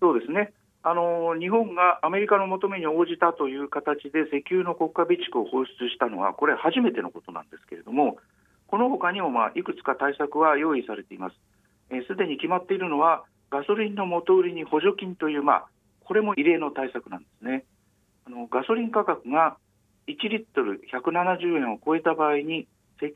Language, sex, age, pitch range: Japanese, male, 50-69, 145-195 Hz